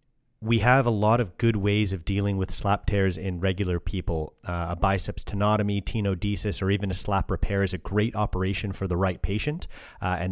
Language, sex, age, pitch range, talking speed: English, male, 30-49, 90-105 Hz, 205 wpm